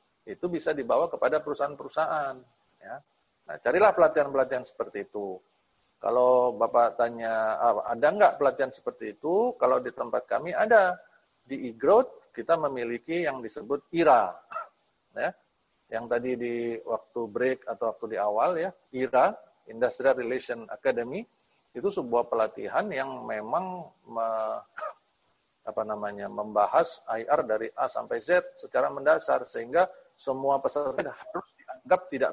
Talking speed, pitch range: 125 wpm, 120-185 Hz